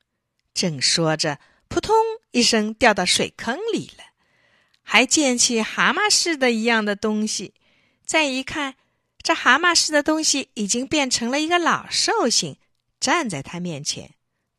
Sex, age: female, 50-69